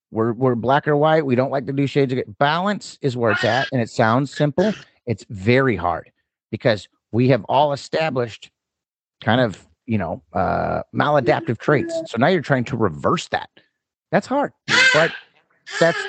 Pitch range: 110-160 Hz